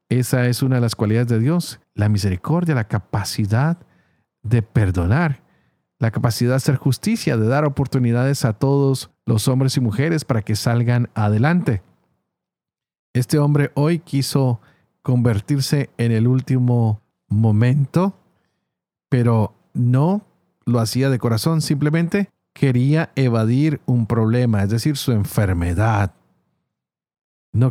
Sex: male